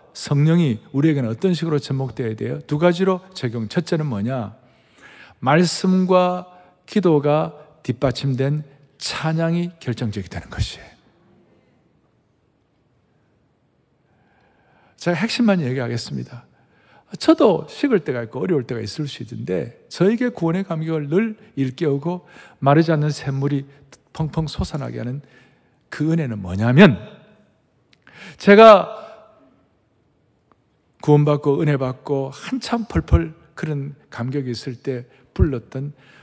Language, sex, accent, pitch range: Korean, male, native, 125-170 Hz